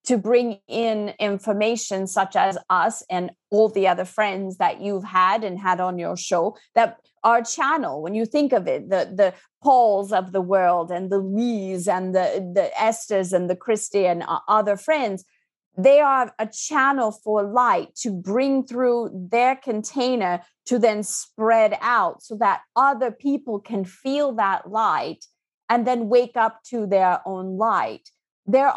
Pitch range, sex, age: 195-250 Hz, female, 30-49